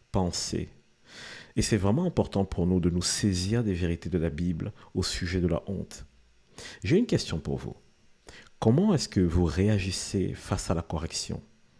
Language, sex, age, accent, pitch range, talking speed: French, male, 50-69, French, 90-105 Hz, 175 wpm